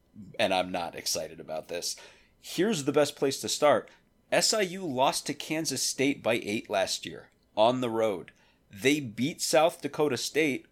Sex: male